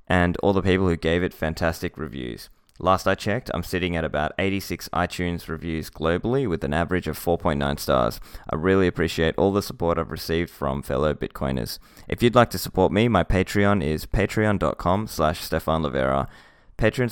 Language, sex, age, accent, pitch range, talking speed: English, male, 20-39, Australian, 80-95 Hz, 180 wpm